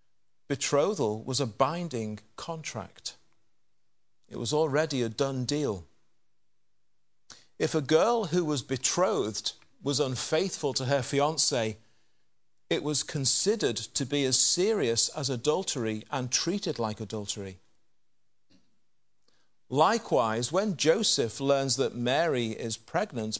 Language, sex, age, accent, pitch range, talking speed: English, male, 40-59, British, 125-165 Hz, 110 wpm